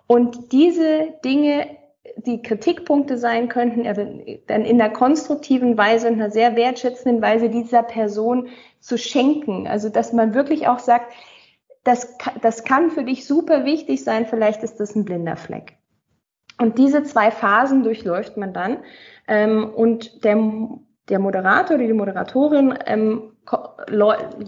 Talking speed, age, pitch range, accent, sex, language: 140 wpm, 20-39, 210-255 Hz, German, female, German